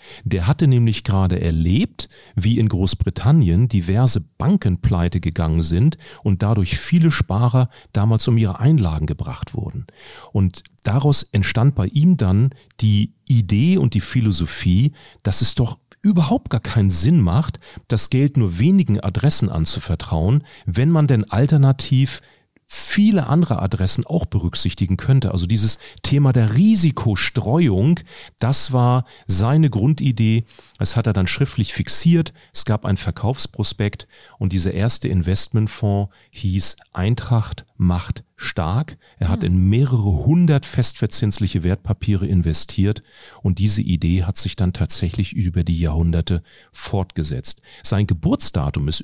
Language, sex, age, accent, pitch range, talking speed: German, male, 40-59, German, 95-130 Hz, 130 wpm